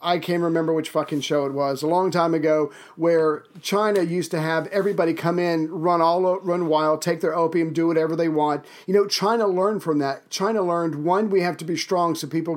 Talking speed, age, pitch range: 225 wpm, 40-59, 155-190 Hz